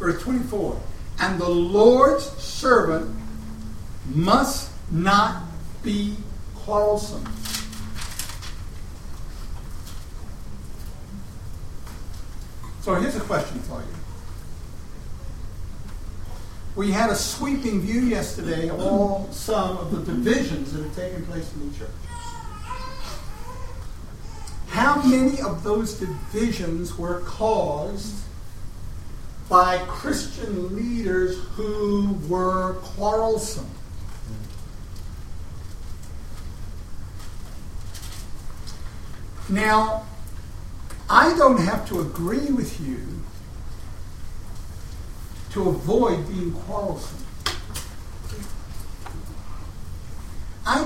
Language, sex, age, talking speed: English, male, 60-79, 70 wpm